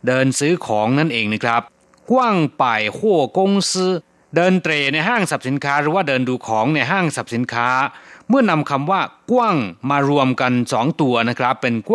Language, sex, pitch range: Thai, male, 125-180 Hz